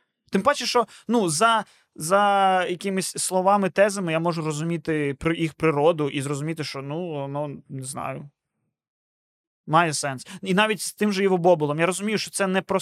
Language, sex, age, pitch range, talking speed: Ukrainian, male, 20-39, 160-210 Hz, 165 wpm